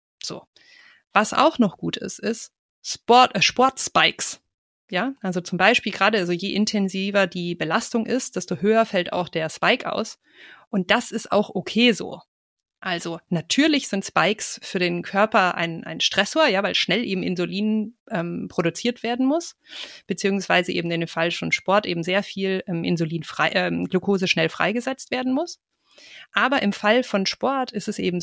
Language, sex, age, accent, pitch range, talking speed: German, female, 30-49, German, 185-235 Hz, 170 wpm